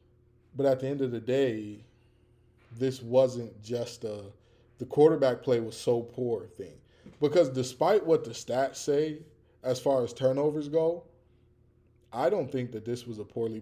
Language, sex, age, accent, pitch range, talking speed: English, male, 20-39, American, 120-150 Hz, 165 wpm